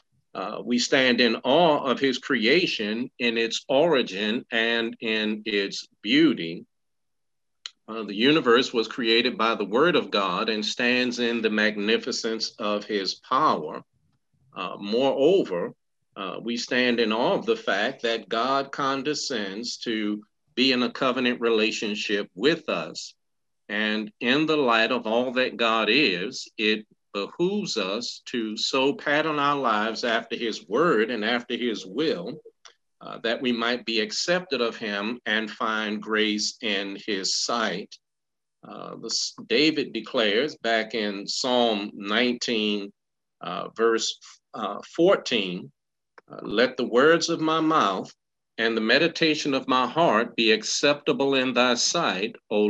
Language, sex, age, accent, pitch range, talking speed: English, male, 50-69, American, 110-130 Hz, 140 wpm